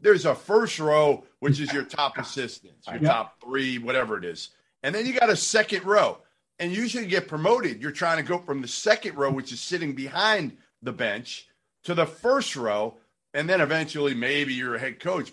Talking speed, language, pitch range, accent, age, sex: 210 wpm, English, 130-170 Hz, American, 50-69, male